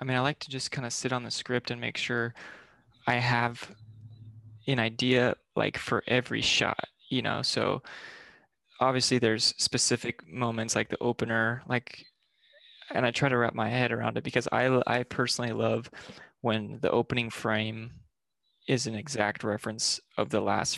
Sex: male